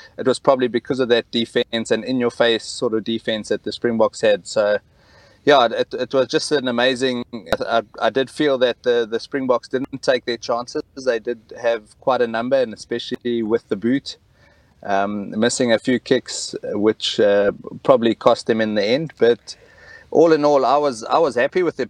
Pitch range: 110-130 Hz